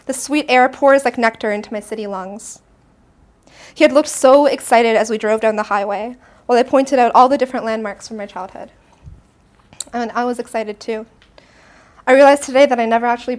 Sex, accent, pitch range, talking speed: female, American, 210-260 Hz, 195 wpm